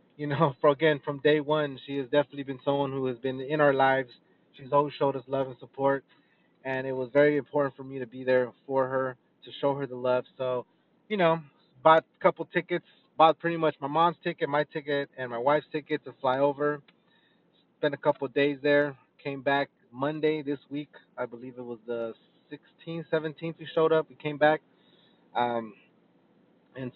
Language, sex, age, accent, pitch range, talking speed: English, male, 20-39, American, 130-155 Hz, 200 wpm